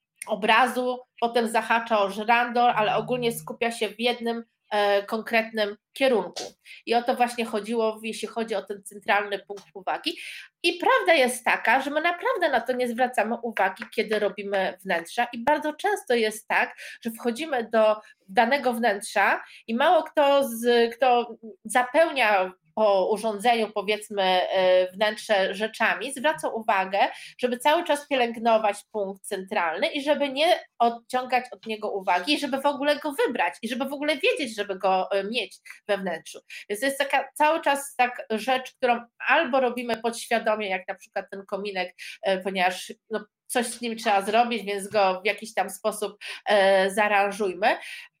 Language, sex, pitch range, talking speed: Polish, female, 205-255 Hz, 150 wpm